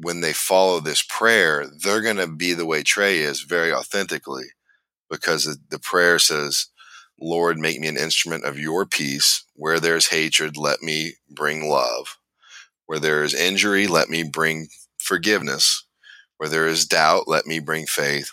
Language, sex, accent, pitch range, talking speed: English, male, American, 75-80 Hz, 165 wpm